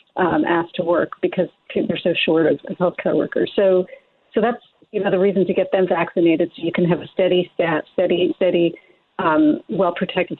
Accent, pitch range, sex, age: American, 170-205 Hz, female, 40-59